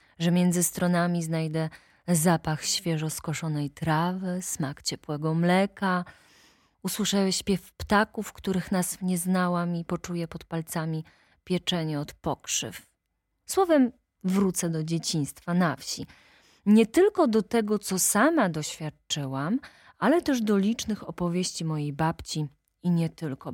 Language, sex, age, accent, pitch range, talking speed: Polish, female, 20-39, native, 165-230 Hz, 120 wpm